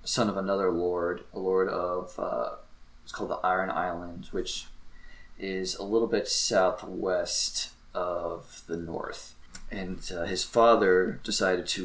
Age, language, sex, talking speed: 20-39, English, male, 140 wpm